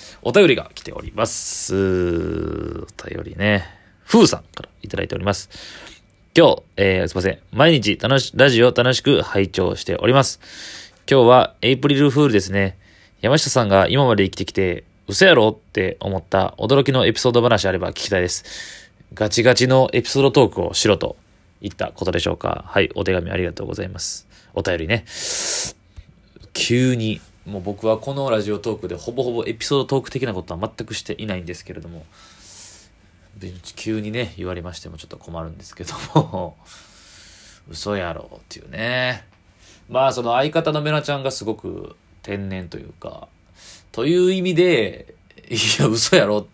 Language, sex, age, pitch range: Japanese, male, 20-39, 90-115 Hz